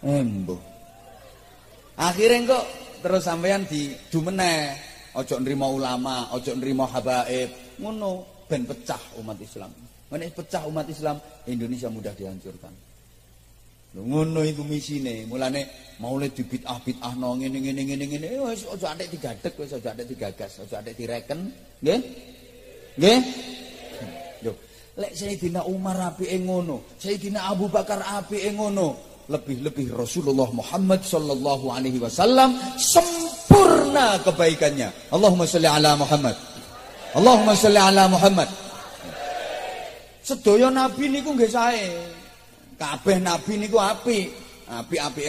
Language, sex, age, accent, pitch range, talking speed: Indonesian, male, 30-49, native, 125-190 Hz, 120 wpm